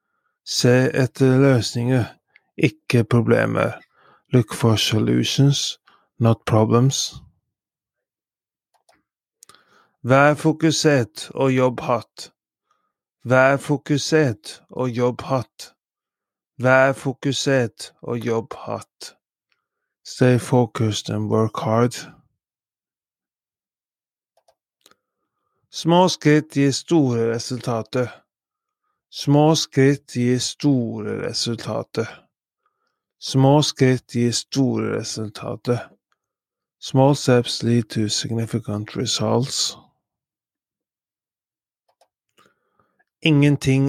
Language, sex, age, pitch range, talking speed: English, male, 30-49, 115-140 Hz, 65 wpm